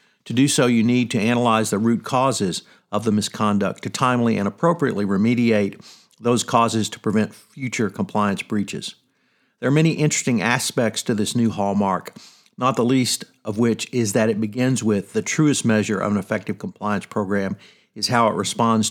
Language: English